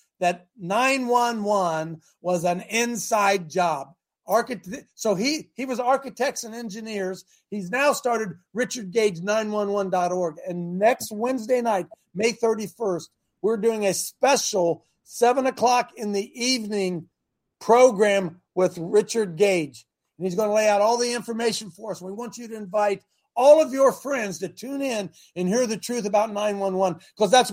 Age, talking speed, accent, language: 50-69, 145 wpm, American, English